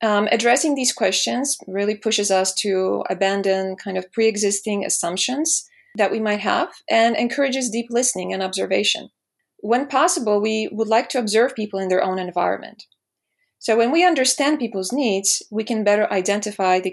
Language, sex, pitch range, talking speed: English, female, 190-240 Hz, 165 wpm